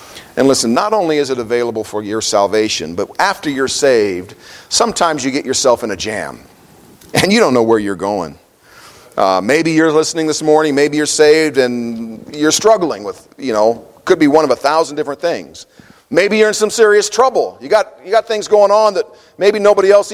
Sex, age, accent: male, 50-69, American